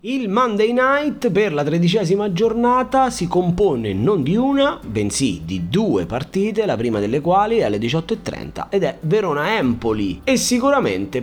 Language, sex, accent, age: Italian, male, native, 30-49